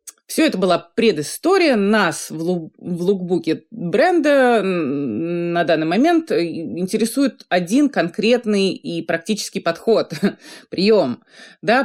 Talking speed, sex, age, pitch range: 105 wpm, female, 30-49, 165-245 Hz